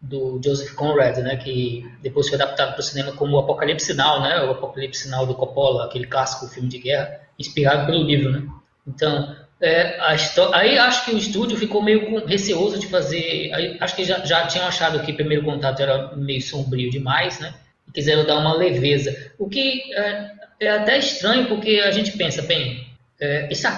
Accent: Brazilian